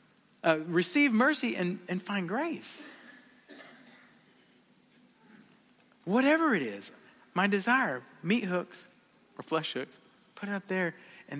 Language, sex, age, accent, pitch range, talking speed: English, male, 40-59, American, 130-195 Hz, 115 wpm